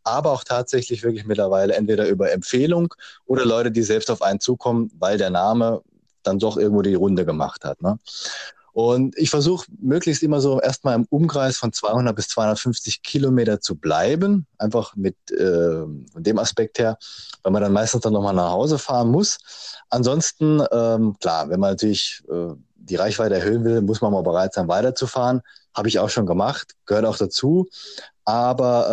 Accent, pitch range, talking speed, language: German, 100-125 Hz, 170 wpm, German